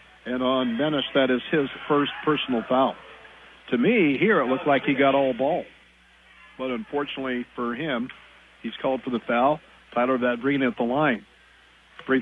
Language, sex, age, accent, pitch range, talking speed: English, male, 50-69, American, 130-160 Hz, 165 wpm